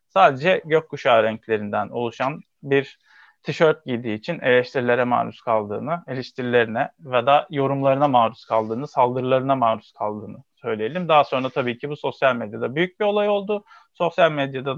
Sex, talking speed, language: male, 140 wpm, Turkish